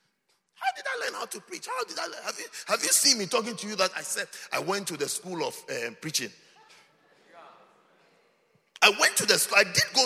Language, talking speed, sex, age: English, 235 wpm, male, 50-69